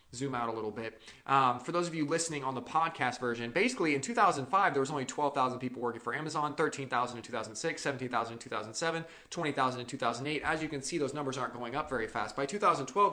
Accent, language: American, English